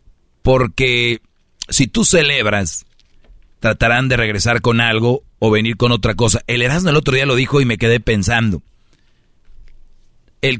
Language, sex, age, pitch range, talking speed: Spanish, male, 40-59, 105-130 Hz, 145 wpm